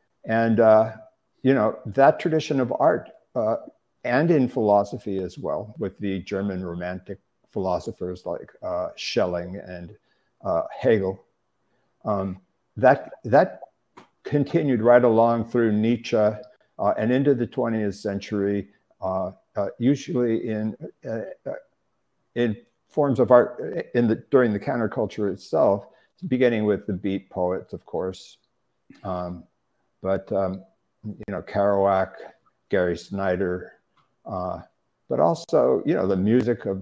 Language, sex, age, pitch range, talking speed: English, male, 60-79, 95-120 Hz, 125 wpm